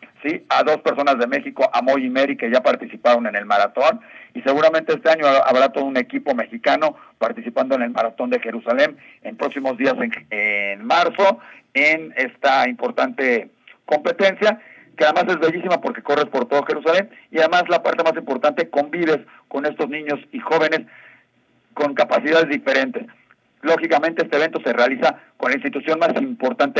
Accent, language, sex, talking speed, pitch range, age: Mexican, English, male, 165 wpm, 130-170 Hz, 50-69